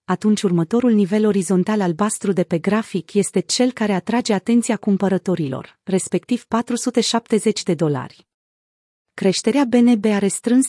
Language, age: Romanian, 30-49